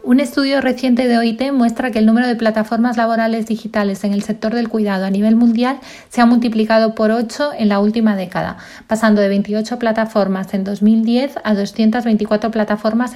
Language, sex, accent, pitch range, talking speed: Spanish, female, Spanish, 205-235 Hz, 180 wpm